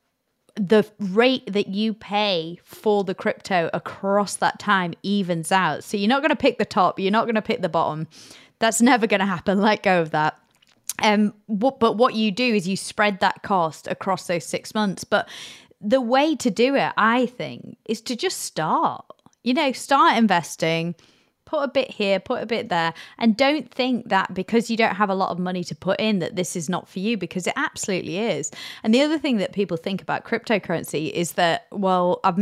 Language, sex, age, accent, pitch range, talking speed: English, female, 20-39, British, 180-230 Hz, 205 wpm